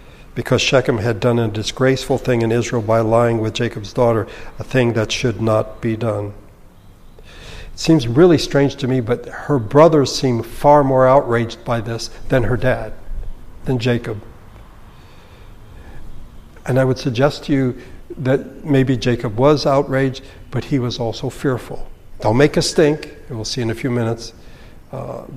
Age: 60-79